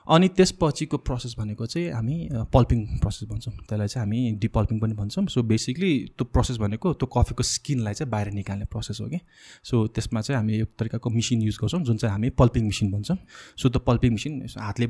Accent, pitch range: Indian, 115-155 Hz